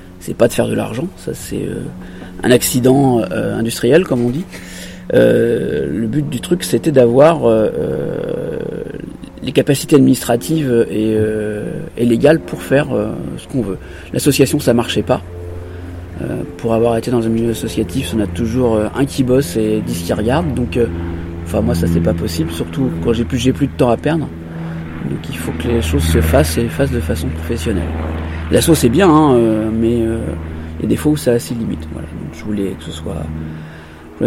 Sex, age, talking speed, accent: male, 30-49, 205 wpm, French